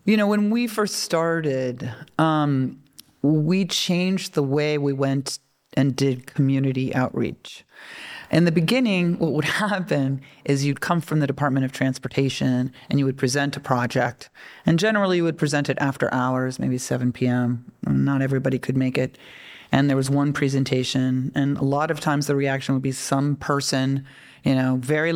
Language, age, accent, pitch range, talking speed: Czech, 40-59, American, 135-160 Hz, 170 wpm